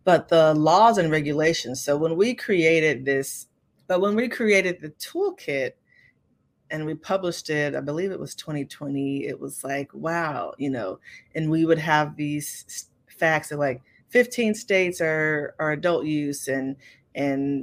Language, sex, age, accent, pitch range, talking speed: English, female, 30-49, American, 140-165 Hz, 160 wpm